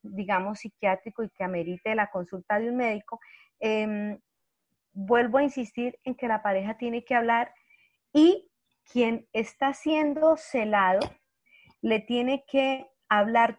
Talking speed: 135 wpm